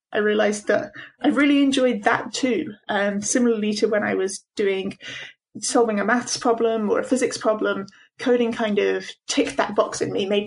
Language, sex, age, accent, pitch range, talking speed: English, female, 20-39, British, 205-255 Hz, 185 wpm